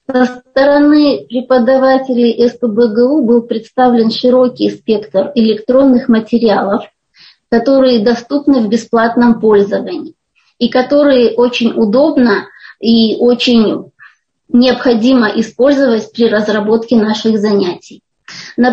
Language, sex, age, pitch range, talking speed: Russian, female, 20-39, 230-280 Hz, 90 wpm